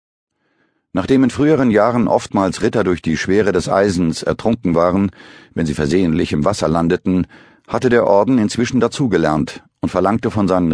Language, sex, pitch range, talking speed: German, male, 85-105 Hz, 155 wpm